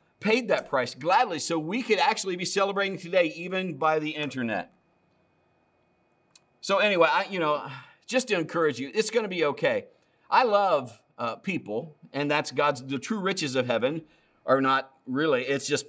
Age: 50-69